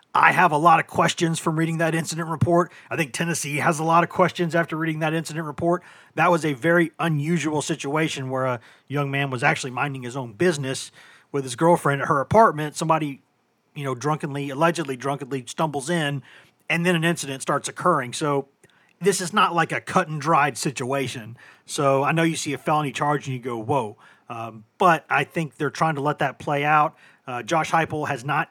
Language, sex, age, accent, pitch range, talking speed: English, male, 40-59, American, 135-170 Hz, 205 wpm